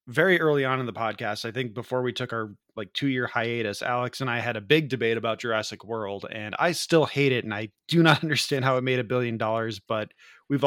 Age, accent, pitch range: 20-39, American, 110-130 Hz